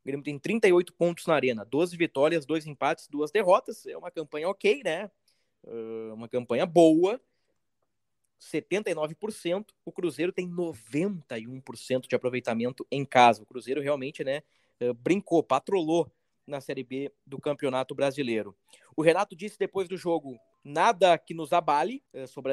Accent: Brazilian